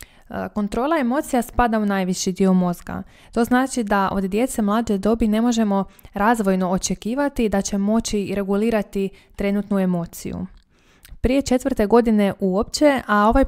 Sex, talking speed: female, 135 wpm